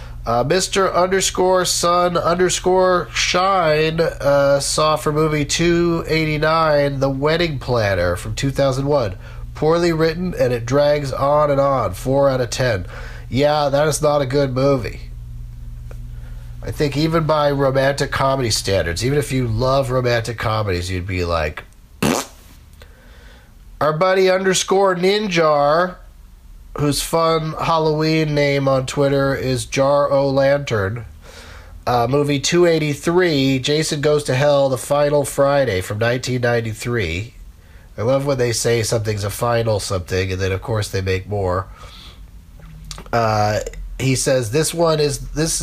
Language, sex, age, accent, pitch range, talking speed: English, male, 40-59, American, 105-150 Hz, 135 wpm